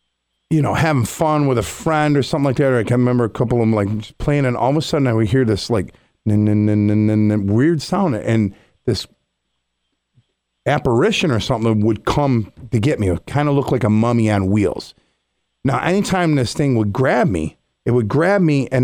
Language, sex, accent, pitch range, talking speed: English, male, American, 105-140 Hz, 225 wpm